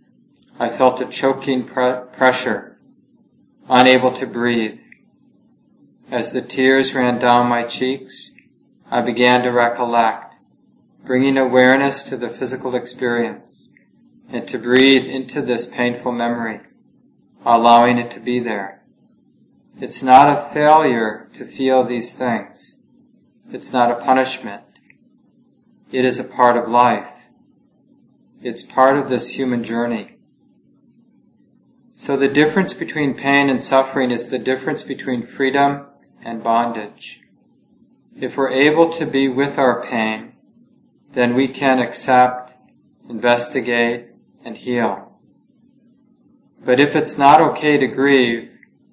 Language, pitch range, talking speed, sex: English, 120-145 Hz, 120 wpm, male